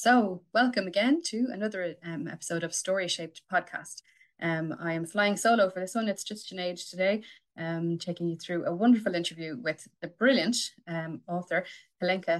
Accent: Irish